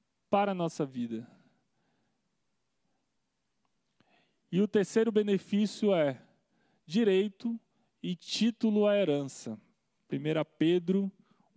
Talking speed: 85 wpm